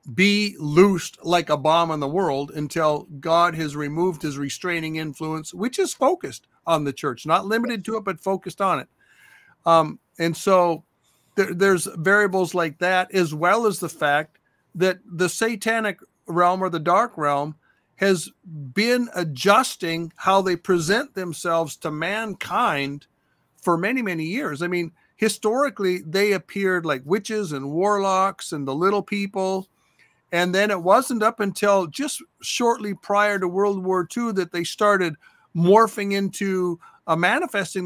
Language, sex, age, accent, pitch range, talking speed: English, male, 50-69, American, 165-200 Hz, 150 wpm